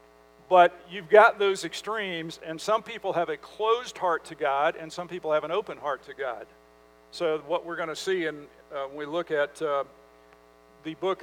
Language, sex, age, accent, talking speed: English, male, 50-69, American, 205 wpm